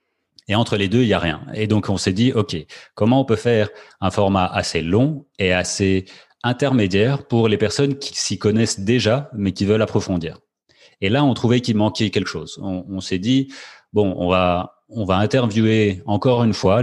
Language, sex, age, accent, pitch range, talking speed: French, male, 30-49, French, 90-115 Hz, 205 wpm